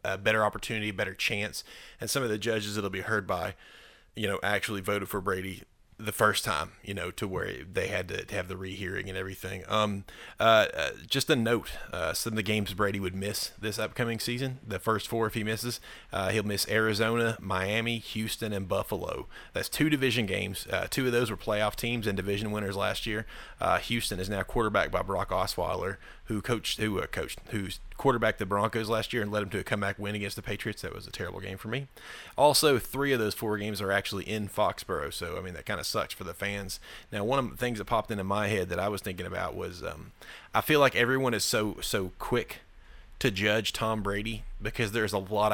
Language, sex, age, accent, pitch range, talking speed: English, male, 30-49, American, 100-115 Hz, 230 wpm